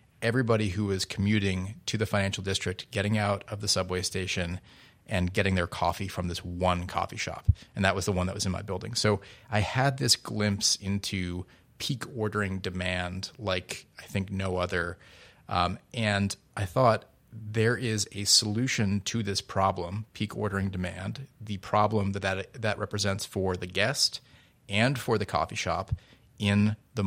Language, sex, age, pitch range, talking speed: English, male, 30-49, 95-115 Hz, 170 wpm